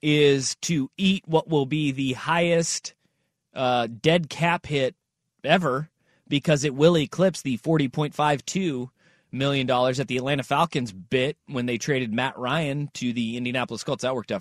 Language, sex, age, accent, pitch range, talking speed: English, male, 30-49, American, 145-195 Hz, 155 wpm